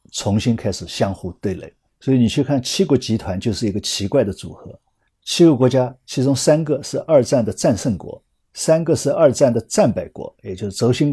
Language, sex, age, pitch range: Chinese, male, 50-69, 95-135 Hz